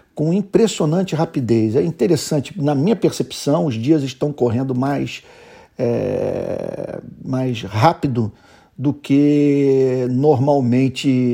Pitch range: 130-165 Hz